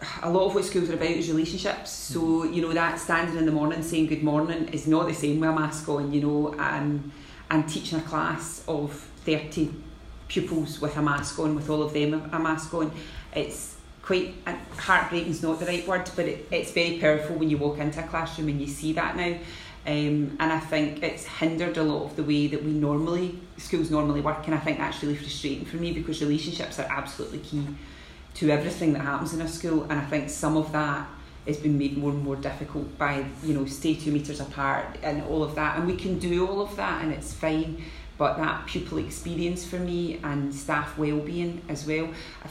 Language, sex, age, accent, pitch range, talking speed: English, female, 30-49, British, 150-165 Hz, 220 wpm